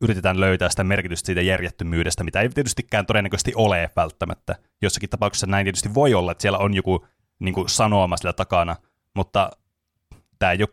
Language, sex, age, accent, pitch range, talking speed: Finnish, male, 20-39, native, 90-110 Hz, 170 wpm